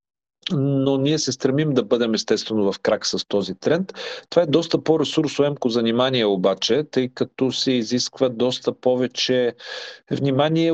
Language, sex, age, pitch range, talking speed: Bulgarian, male, 40-59, 115-155 Hz, 145 wpm